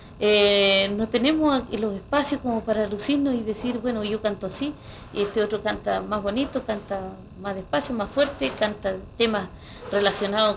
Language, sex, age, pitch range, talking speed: Spanish, female, 40-59, 200-260 Hz, 160 wpm